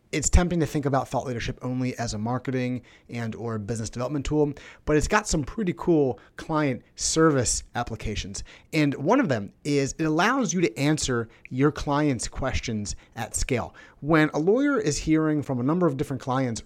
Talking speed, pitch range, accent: 185 wpm, 125-155 Hz, American